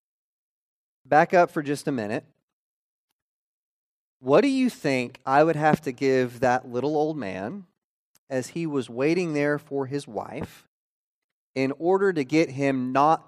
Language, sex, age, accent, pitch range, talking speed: English, male, 30-49, American, 125-180 Hz, 150 wpm